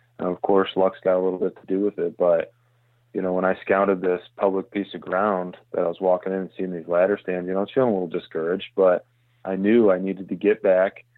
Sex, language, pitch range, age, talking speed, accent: male, English, 90-105 Hz, 20-39, 265 wpm, American